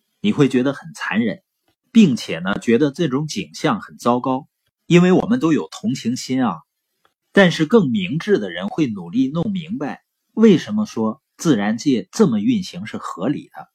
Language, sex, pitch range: Chinese, male, 135-200 Hz